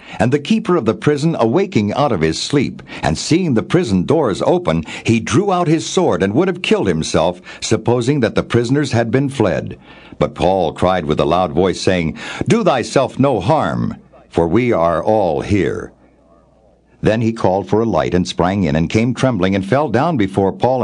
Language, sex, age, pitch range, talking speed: English, male, 60-79, 95-145 Hz, 195 wpm